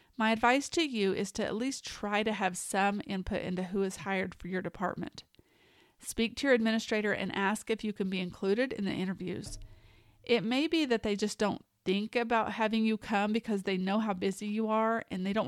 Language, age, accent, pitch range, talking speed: English, 40-59, American, 195-230 Hz, 215 wpm